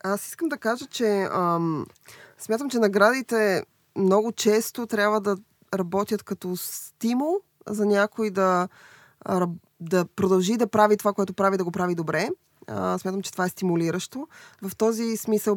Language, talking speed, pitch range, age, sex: Bulgarian, 145 wpm, 175-215 Hz, 20-39, female